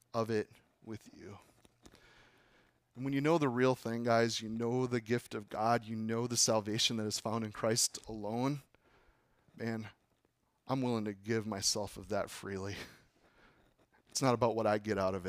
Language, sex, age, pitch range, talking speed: English, male, 30-49, 105-120 Hz, 175 wpm